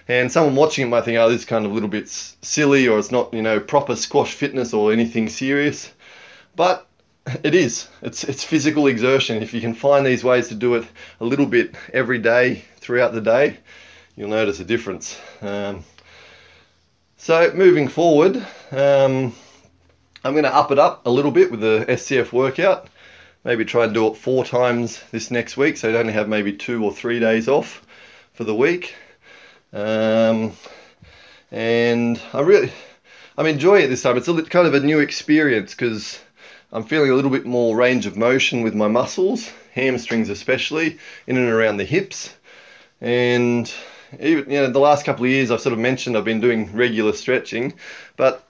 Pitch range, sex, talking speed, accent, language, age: 110-140 Hz, male, 185 wpm, Australian, English, 20-39